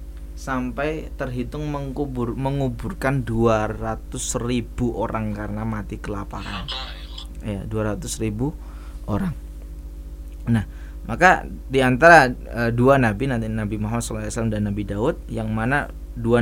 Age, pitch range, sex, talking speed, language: 20-39, 80-120 Hz, male, 105 wpm, Indonesian